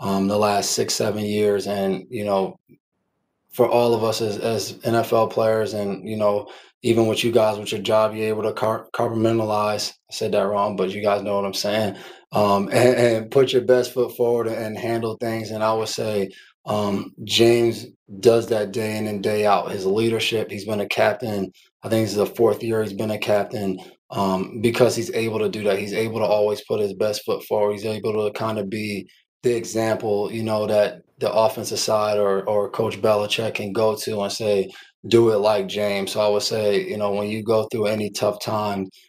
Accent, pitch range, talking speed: American, 100-110 Hz, 215 wpm